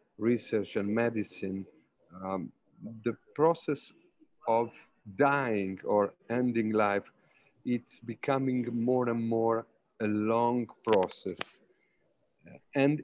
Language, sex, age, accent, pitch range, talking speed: English, male, 50-69, Italian, 105-135 Hz, 90 wpm